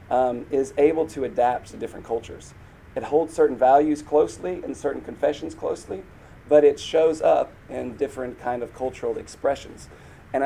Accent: American